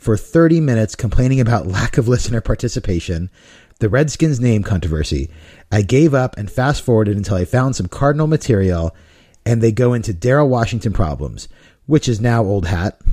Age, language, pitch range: 30-49, English, 105-155 Hz